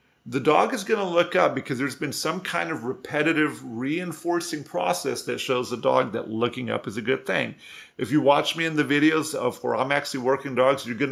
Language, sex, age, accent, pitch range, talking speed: English, male, 50-69, American, 130-165 Hz, 225 wpm